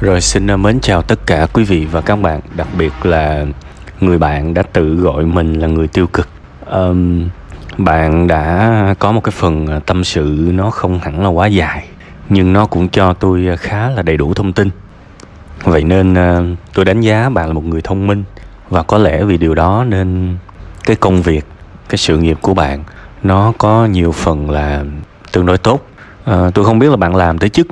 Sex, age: male, 20-39